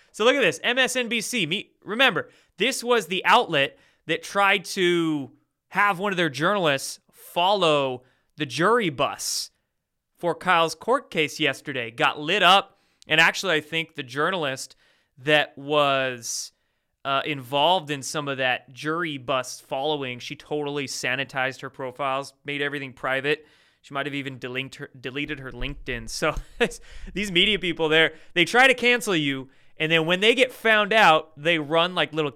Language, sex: English, male